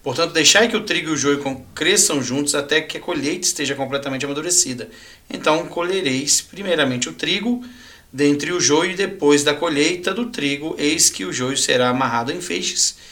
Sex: male